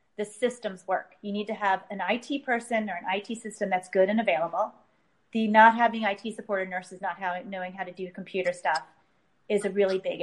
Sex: female